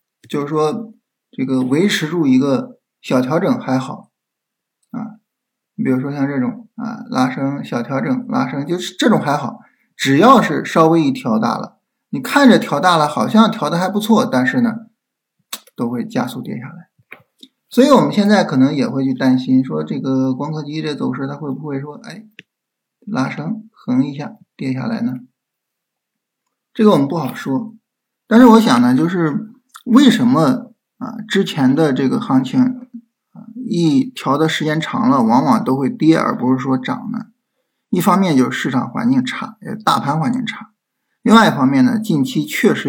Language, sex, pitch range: Chinese, male, 150-250 Hz